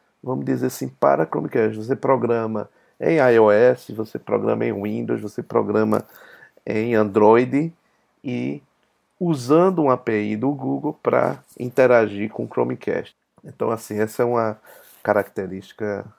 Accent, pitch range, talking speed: Brazilian, 105-120 Hz, 125 wpm